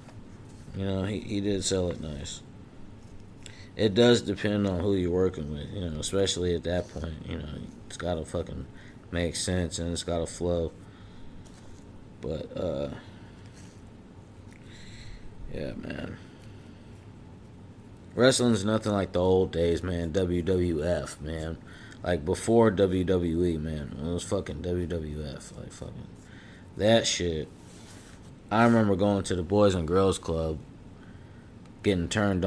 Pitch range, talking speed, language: 90-110 Hz, 130 wpm, English